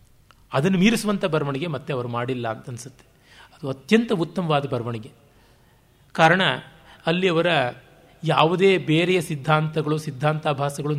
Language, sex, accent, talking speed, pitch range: Kannada, male, native, 105 wpm, 140-185 Hz